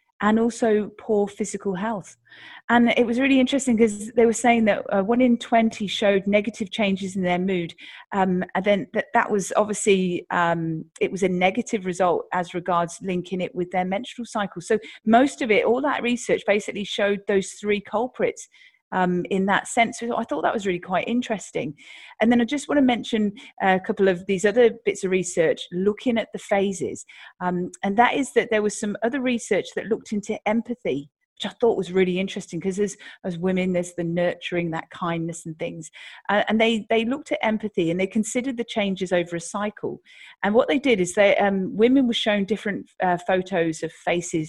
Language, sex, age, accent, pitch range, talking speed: English, female, 40-59, British, 185-230 Hz, 200 wpm